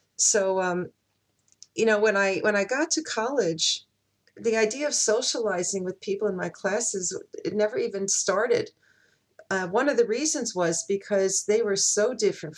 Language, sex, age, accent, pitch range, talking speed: English, female, 40-59, American, 185-215 Hz, 165 wpm